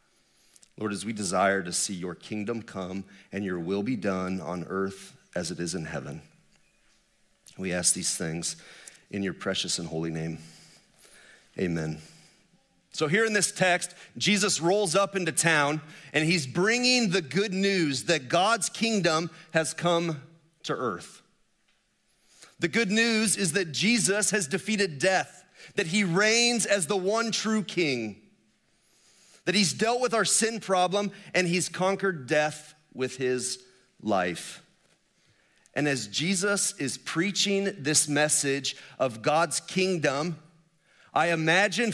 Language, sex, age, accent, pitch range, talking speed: English, male, 40-59, American, 140-200 Hz, 140 wpm